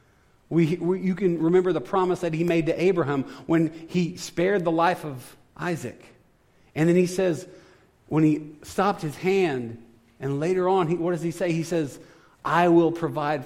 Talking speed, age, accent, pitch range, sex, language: 185 wpm, 40-59, American, 130-175 Hz, male, English